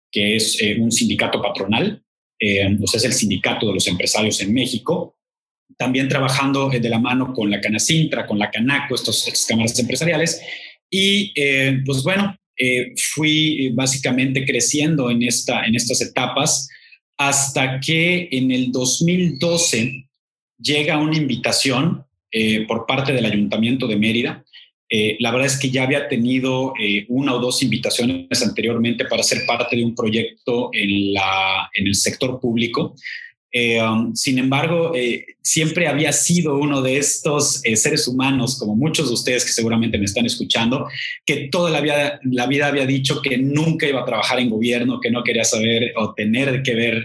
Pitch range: 115-145 Hz